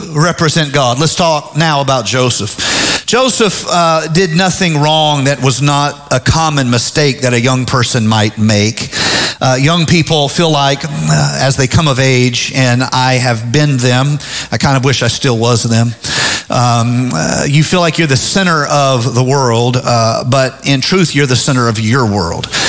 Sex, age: male, 40-59